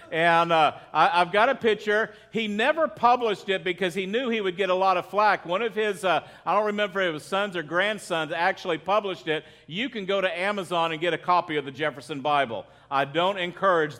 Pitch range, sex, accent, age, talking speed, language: 165-205 Hz, male, American, 50-69, 225 wpm, English